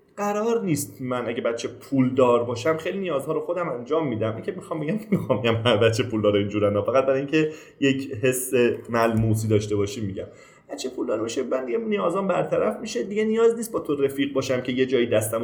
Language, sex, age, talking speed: Persian, male, 30-49, 190 wpm